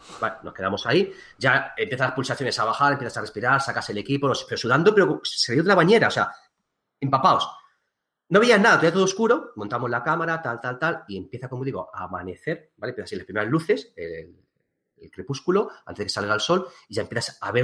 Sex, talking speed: male, 210 wpm